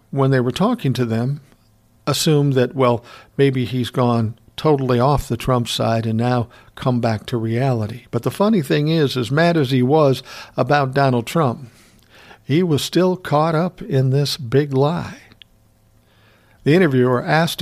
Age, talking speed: 60-79, 165 wpm